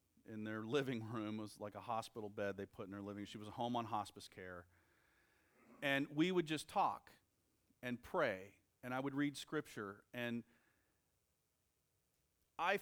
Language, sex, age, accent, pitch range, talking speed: English, male, 40-59, American, 95-145 Hz, 170 wpm